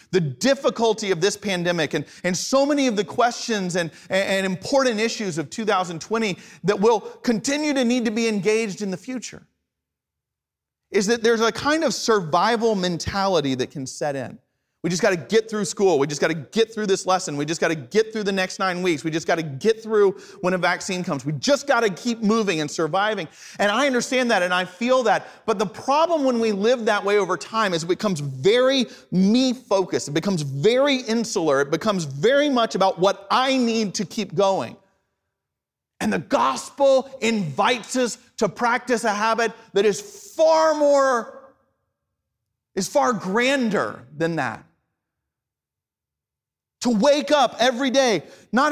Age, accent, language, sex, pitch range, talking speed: 30-49, American, English, male, 190-255 Hz, 175 wpm